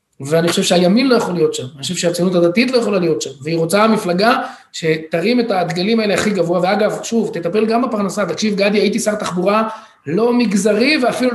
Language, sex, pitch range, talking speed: Hebrew, male, 185-235 Hz, 195 wpm